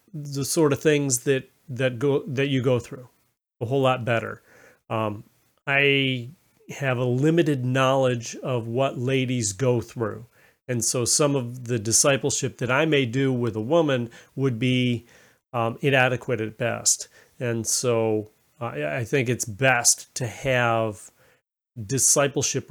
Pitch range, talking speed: 120-150 Hz, 145 wpm